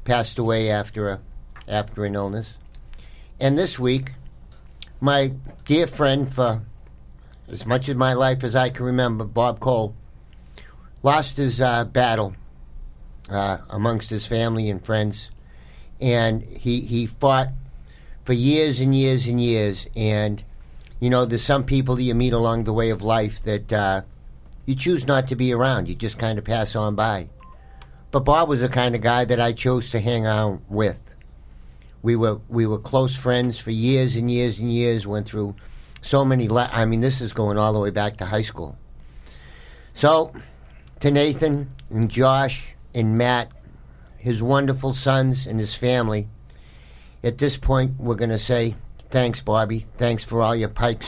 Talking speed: 170 wpm